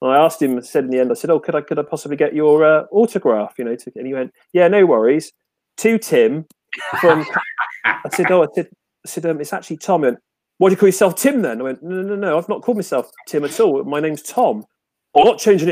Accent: British